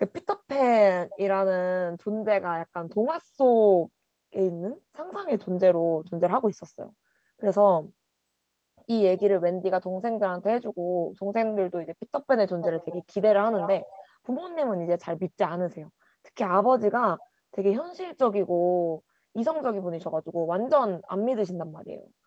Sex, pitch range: female, 175-220 Hz